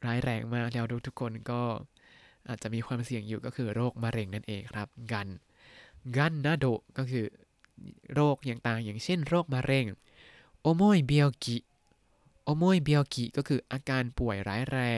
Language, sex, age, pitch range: Thai, male, 20-39, 115-150 Hz